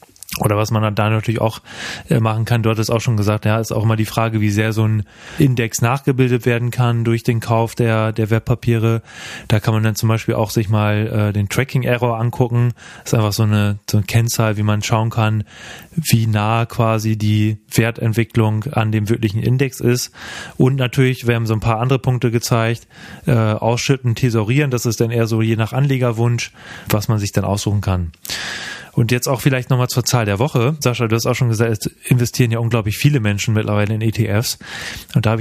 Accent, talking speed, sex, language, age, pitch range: German, 205 wpm, male, German, 30-49, 110-125 Hz